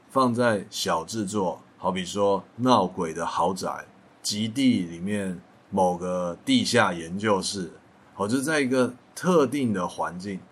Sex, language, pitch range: male, Chinese, 95-125 Hz